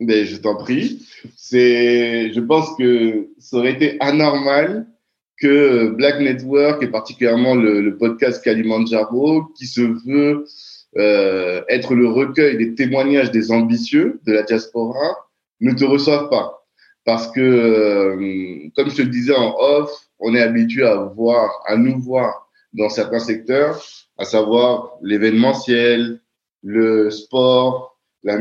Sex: male